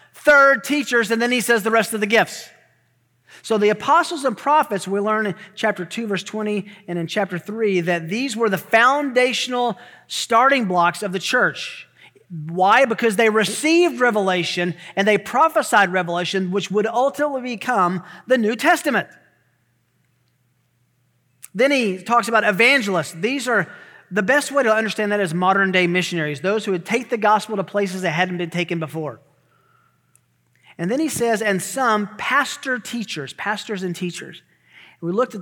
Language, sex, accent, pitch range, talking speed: English, male, American, 175-230 Hz, 165 wpm